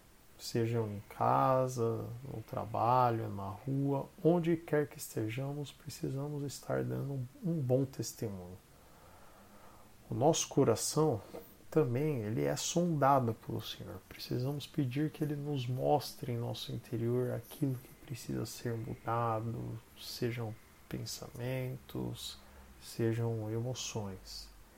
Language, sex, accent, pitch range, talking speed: Portuguese, male, Brazilian, 115-145 Hz, 105 wpm